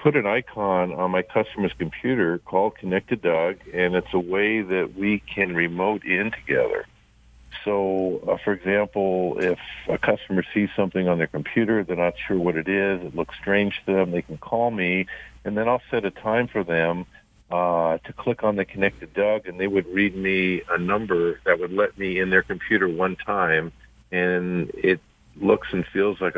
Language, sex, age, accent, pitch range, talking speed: English, male, 50-69, American, 85-100 Hz, 190 wpm